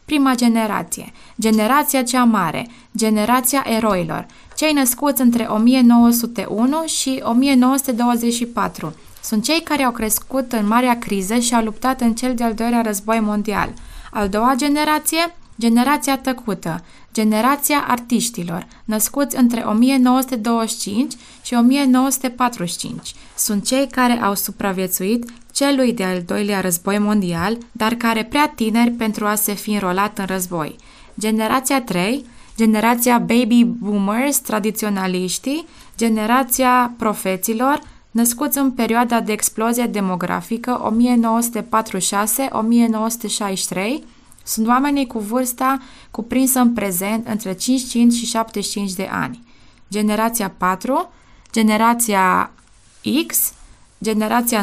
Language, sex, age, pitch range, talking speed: Romanian, female, 20-39, 210-250 Hz, 105 wpm